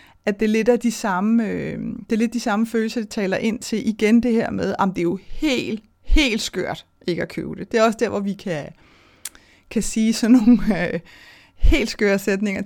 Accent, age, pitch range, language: native, 30-49, 205-245 Hz, Danish